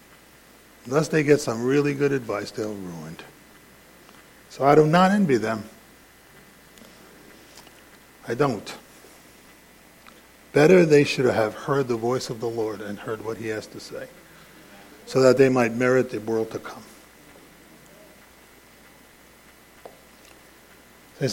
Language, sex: English, male